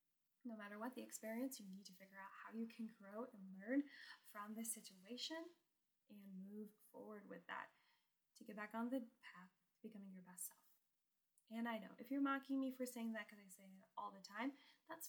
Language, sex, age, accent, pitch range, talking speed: English, female, 10-29, American, 210-255 Hz, 210 wpm